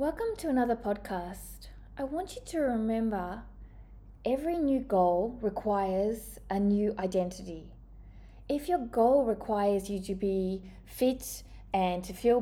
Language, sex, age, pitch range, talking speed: English, female, 20-39, 200-250 Hz, 130 wpm